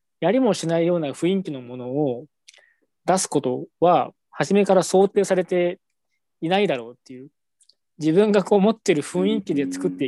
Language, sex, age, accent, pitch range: Japanese, male, 20-39, native, 130-190 Hz